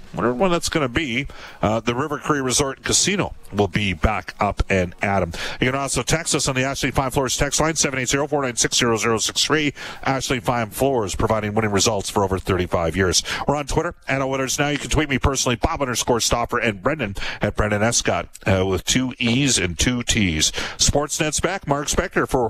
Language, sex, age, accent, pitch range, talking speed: English, male, 50-69, American, 105-135 Hz, 220 wpm